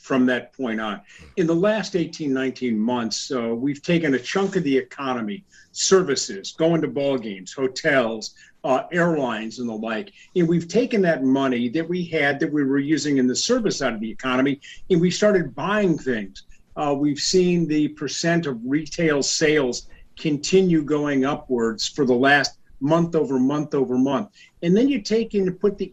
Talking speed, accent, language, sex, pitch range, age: 185 wpm, American, English, male, 135-190 Hz, 50-69